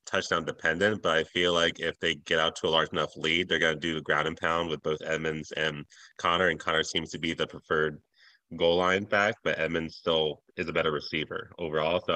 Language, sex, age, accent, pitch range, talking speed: English, male, 20-39, American, 80-90 Hz, 230 wpm